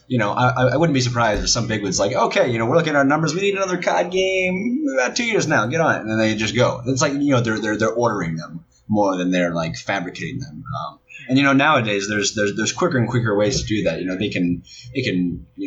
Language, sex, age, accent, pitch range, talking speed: English, male, 30-49, American, 100-145 Hz, 285 wpm